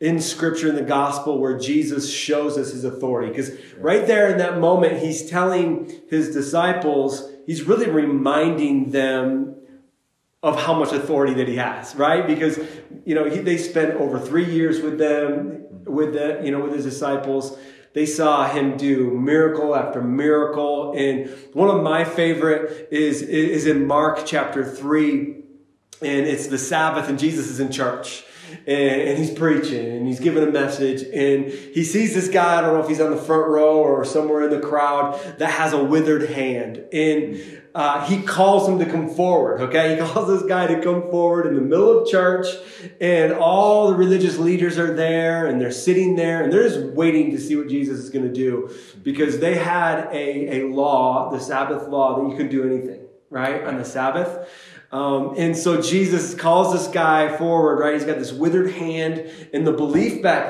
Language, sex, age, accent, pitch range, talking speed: English, male, 30-49, American, 140-165 Hz, 190 wpm